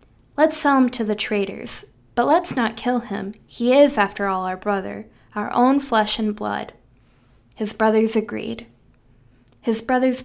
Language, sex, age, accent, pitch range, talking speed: English, female, 10-29, American, 200-250 Hz, 160 wpm